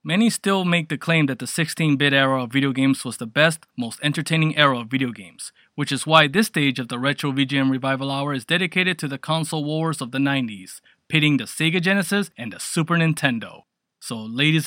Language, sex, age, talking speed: English, male, 20-39, 210 wpm